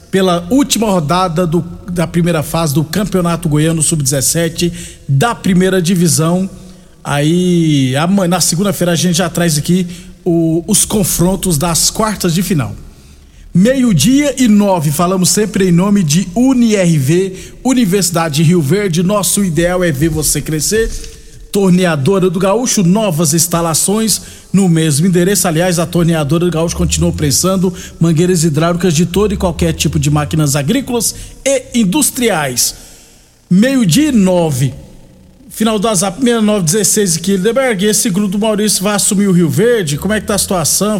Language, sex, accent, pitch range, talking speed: Portuguese, male, Brazilian, 165-205 Hz, 145 wpm